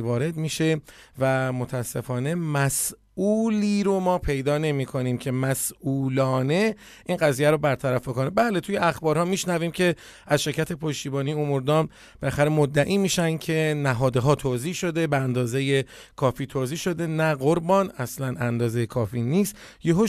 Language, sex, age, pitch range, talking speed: Persian, male, 30-49, 135-170 Hz, 145 wpm